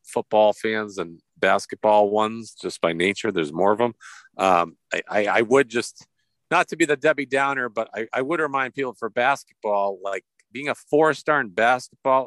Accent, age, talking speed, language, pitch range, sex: American, 50-69, 190 wpm, English, 105-135 Hz, male